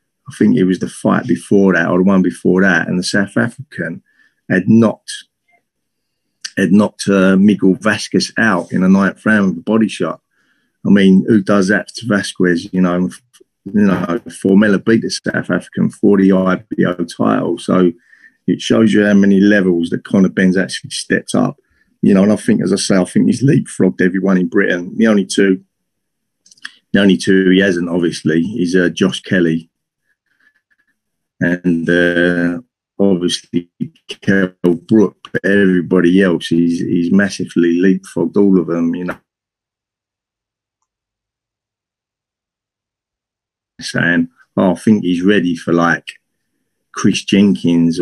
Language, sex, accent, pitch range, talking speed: English, male, British, 85-100 Hz, 150 wpm